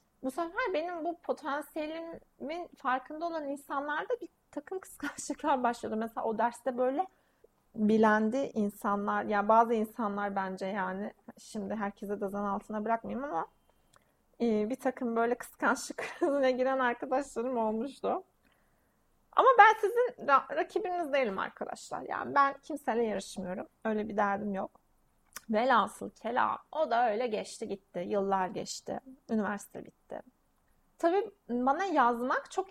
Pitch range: 210-285 Hz